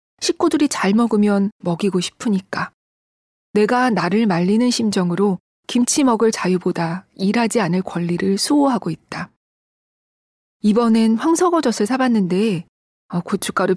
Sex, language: female, Korean